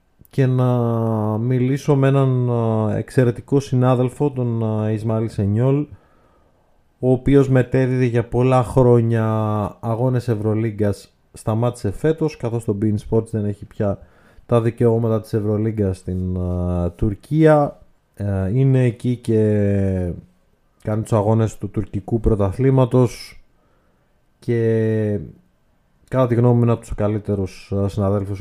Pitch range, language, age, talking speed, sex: 100-125 Hz, Greek, 30-49, 110 wpm, male